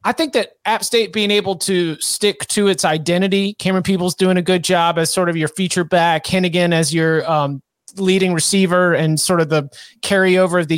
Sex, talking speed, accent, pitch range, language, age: male, 205 wpm, American, 165-190 Hz, English, 30-49